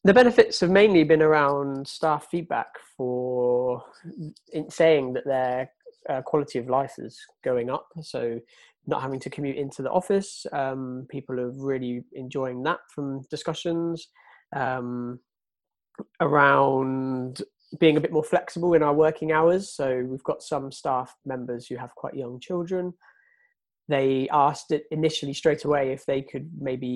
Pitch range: 125-155 Hz